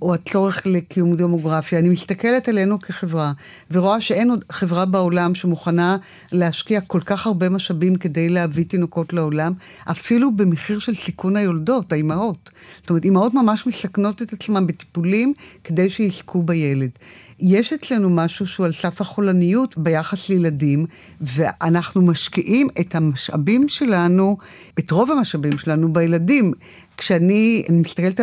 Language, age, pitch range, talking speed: Hebrew, 50-69, 165-210 Hz, 130 wpm